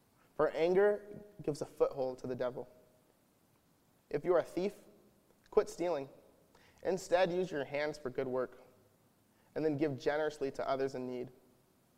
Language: English